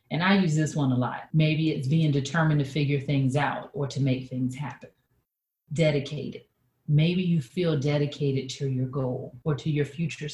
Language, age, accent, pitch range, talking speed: English, 40-59, American, 135-180 Hz, 185 wpm